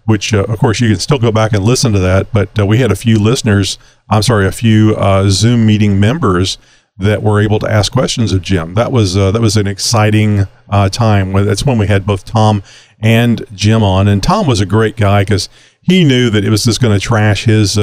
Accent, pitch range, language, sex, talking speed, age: American, 105-130 Hz, English, male, 240 wpm, 50-69